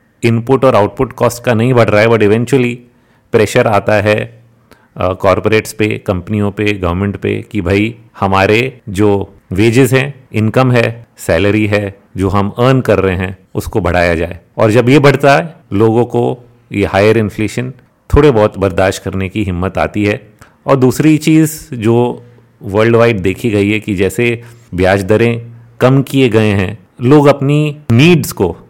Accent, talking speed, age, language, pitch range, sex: Indian, 130 wpm, 40-59, English, 100-120 Hz, male